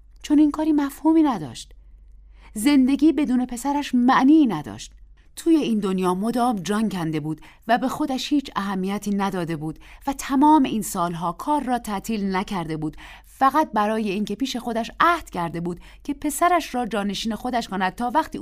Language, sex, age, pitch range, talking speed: Persian, female, 30-49, 150-250 Hz, 165 wpm